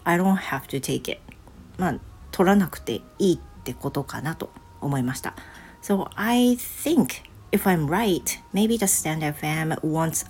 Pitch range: 140-210 Hz